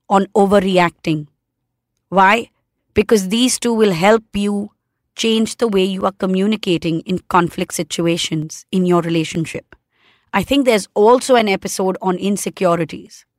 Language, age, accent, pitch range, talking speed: English, 20-39, Indian, 180-235 Hz, 130 wpm